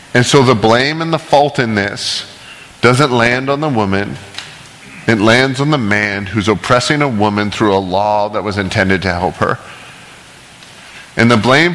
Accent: American